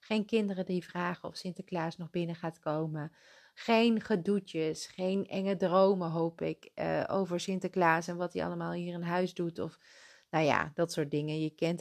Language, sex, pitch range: Dutch, female, 160-195 Hz